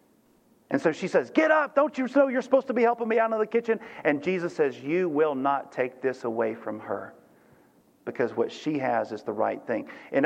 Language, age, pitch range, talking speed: English, 50-69, 115-150 Hz, 230 wpm